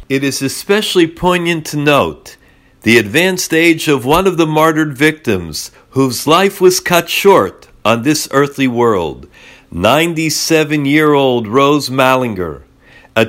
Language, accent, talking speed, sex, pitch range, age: English, American, 125 wpm, male, 125-165 Hz, 50-69